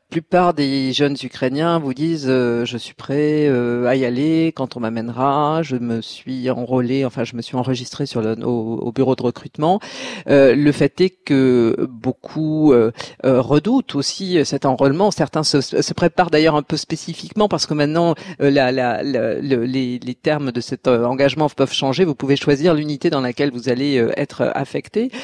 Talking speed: 190 wpm